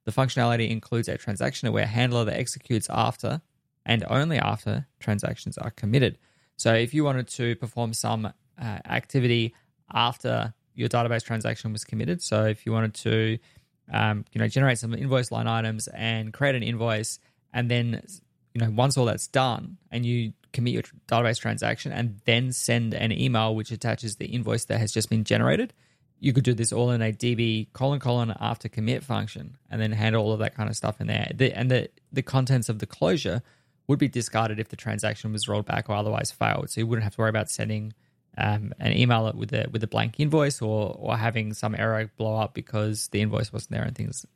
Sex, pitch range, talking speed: male, 110-130 Hz, 205 wpm